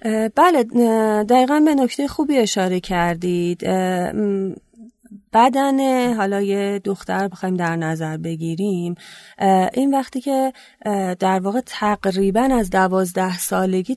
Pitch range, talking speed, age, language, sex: 180-225 Hz, 105 wpm, 30-49, Persian, female